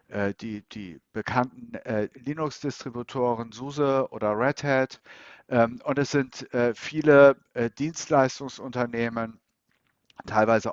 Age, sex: 60-79, male